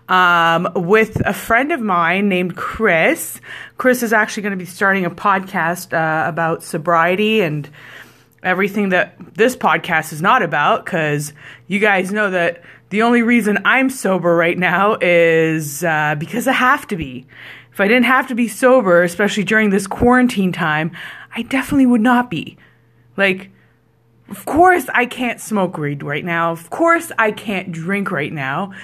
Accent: American